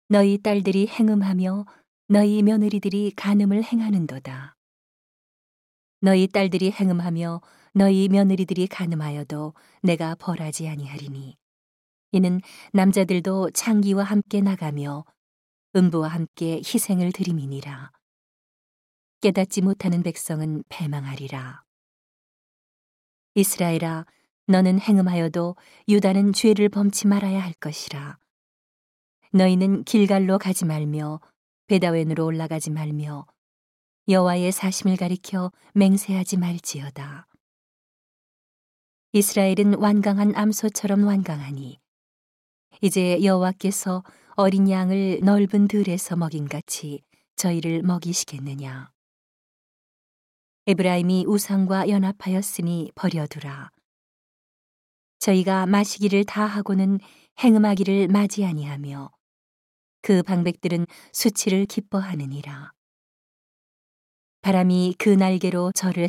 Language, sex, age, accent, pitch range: Korean, female, 40-59, native, 160-200 Hz